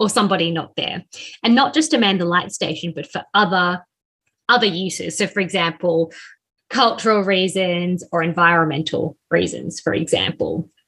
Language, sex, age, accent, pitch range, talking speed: English, female, 20-39, Australian, 165-215 Hz, 145 wpm